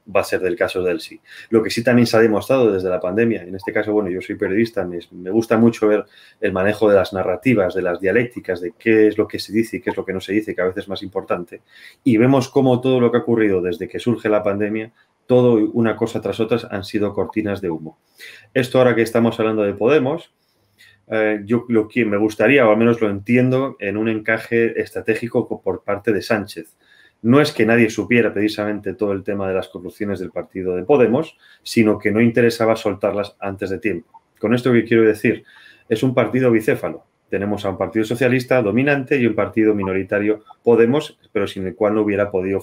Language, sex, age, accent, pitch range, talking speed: Spanish, male, 30-49, Spanish, 100-115 Hz, 220 wpm